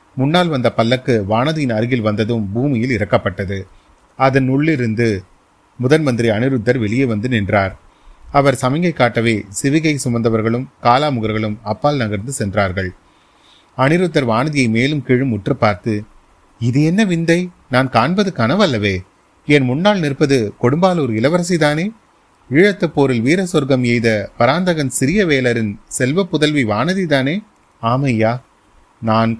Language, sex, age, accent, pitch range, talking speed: Tamil, male, 30-49, native, 110-145 Hz, 105 wpm